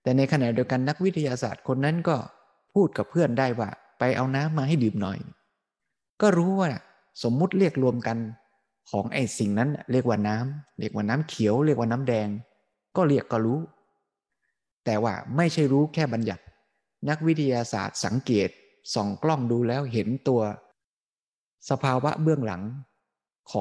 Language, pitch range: Thai, 110-145 Hz